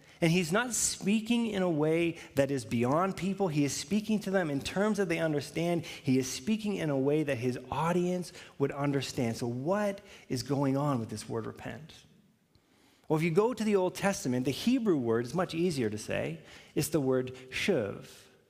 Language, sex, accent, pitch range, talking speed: English, male, American, 130-190 Hz, 200 wpm